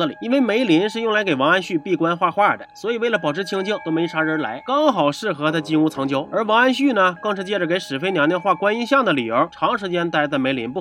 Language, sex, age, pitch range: Chinese, male, 30-49, 165-265 Hz